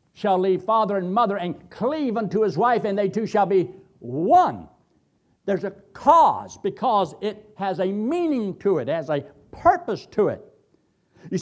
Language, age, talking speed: English, 60-79, 175 wpm